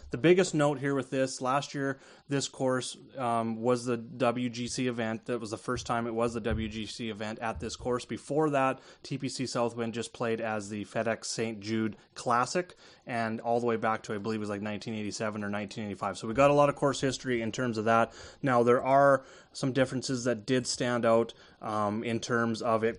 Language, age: English, 30-49